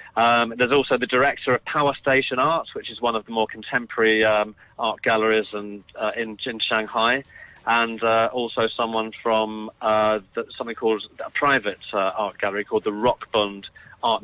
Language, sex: English, male